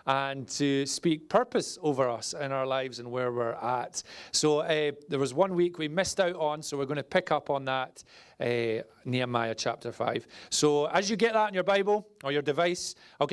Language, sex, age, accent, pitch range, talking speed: English, male, 40-59, British, 140-185 Hz, 210 wpm